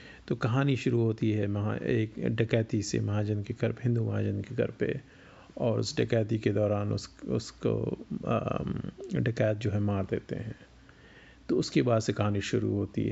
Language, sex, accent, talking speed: Hindi, male, native, 170 wpm